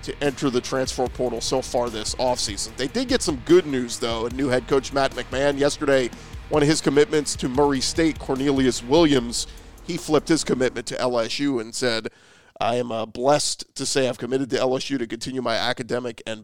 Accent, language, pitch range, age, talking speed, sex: American, English, 115-145 Hz, 40-59, 200 wpm, male